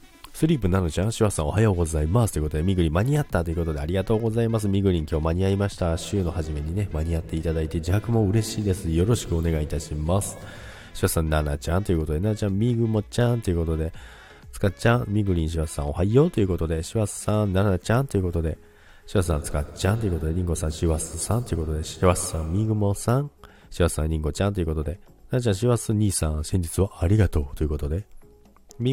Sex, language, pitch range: male, Japanese, 80-105 Hz